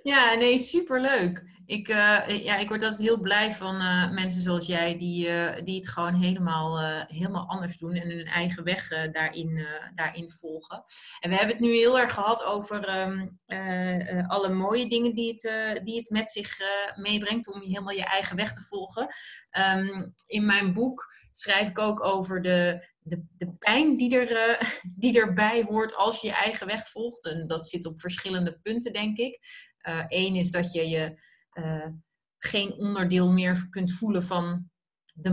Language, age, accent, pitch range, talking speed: Dutch, 30-49, Dutch, 180-215 Hz, 175 wpm